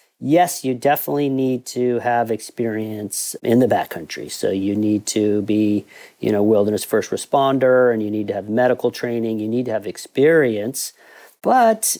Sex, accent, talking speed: male, American, 165 wpm